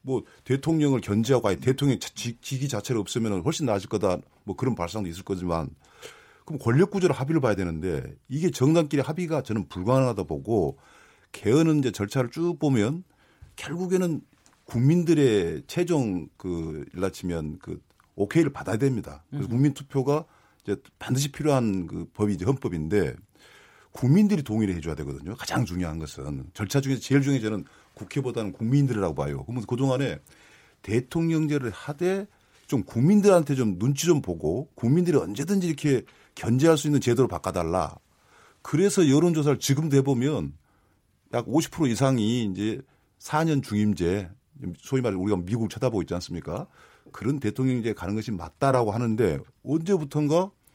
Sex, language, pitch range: male, Korean, 100-145 Hz